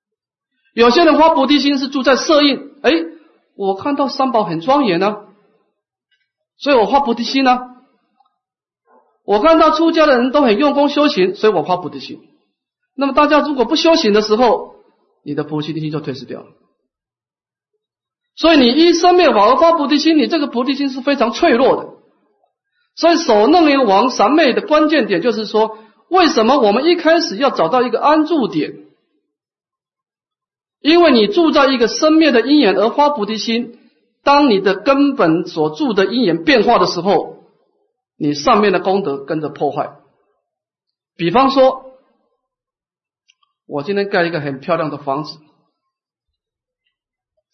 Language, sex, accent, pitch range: Chinese, male, native, 190-305 Hz